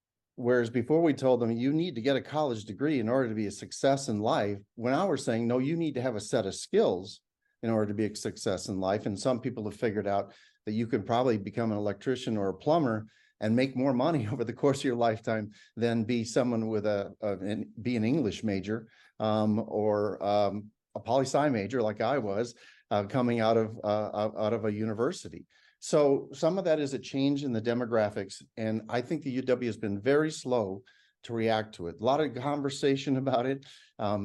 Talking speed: 225 wpm